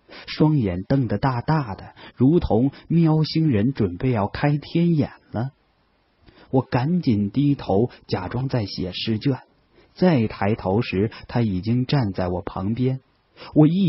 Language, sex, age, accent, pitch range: Chinese, male, 30-49, native, 105-155 Hz